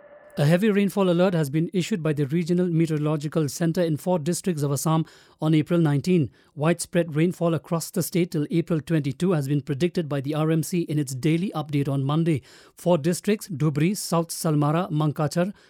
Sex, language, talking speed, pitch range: male, English, 175 wpm, 155-180 Hz